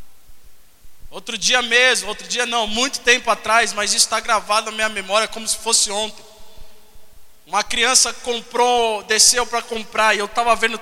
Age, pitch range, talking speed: 20-39, 220-270 Hz, 165 wpm